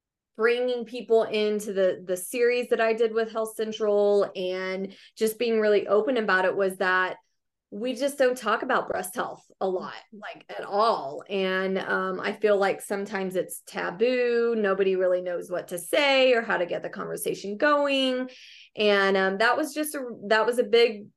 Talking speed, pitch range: 180 wpm, 195-230 Hz